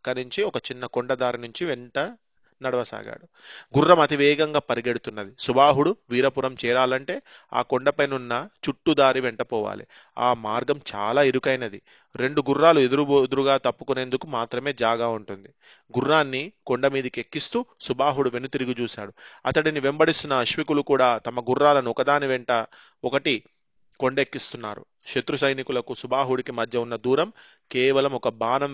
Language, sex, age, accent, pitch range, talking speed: Telugu, male, 30-49, native, 120-140 Hz, 120 wpm